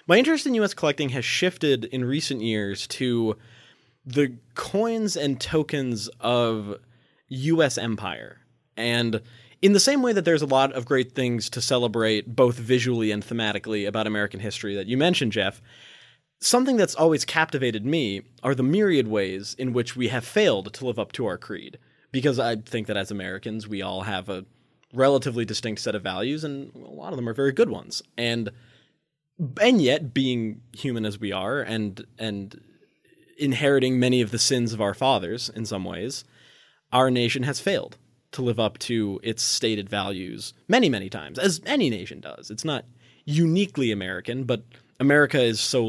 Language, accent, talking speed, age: English, American, 175 wpm, 20-39